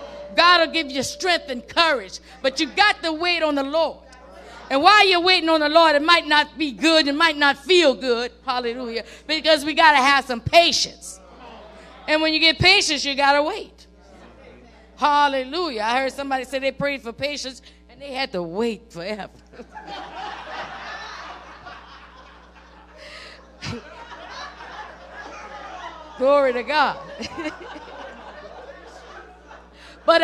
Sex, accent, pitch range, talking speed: female, American, 260-335 Hz, 135 wpm